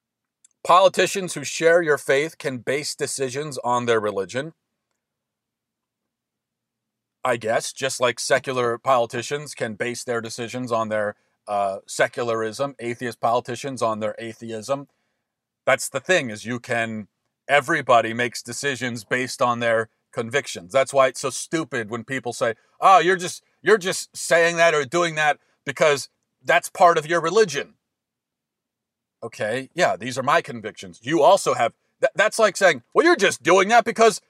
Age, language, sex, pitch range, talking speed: 40-59, English, male, 120-165 Hz, 145 wpm